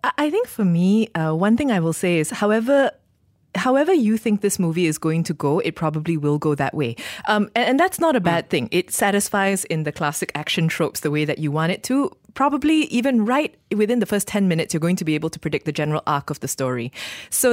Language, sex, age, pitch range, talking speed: English, female, 20-39, 155-210 Hz, 245 wpm